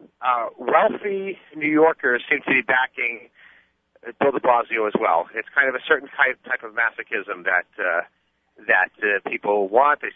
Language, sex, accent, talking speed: English, male, American, 175 wpm